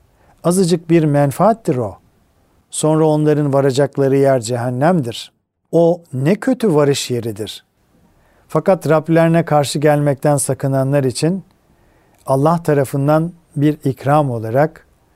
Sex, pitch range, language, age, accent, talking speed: male, 120-155 Hz, Turkish, 50-69, native, 100 wpm